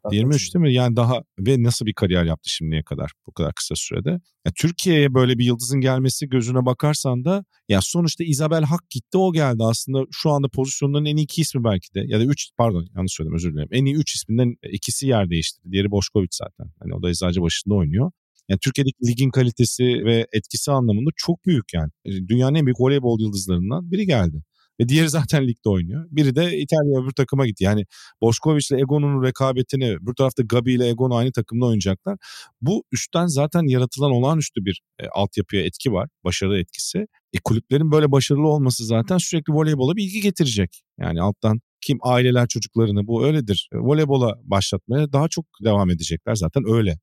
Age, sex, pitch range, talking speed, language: 50-69, male, 100-145 Hz, 180 wpm, Turkish